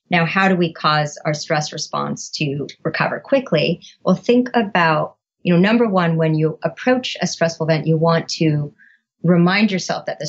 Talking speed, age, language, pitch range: 180 wpm, 40-59, English, 150-175 Hz